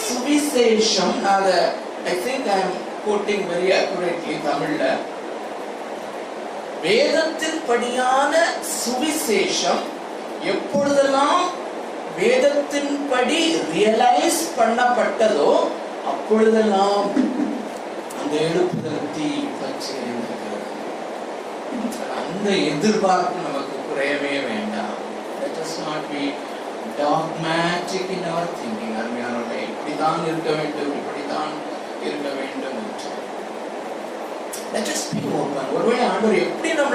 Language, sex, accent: Tamil, male, native